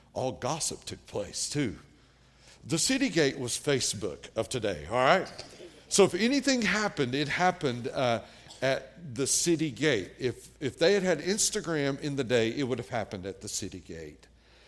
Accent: American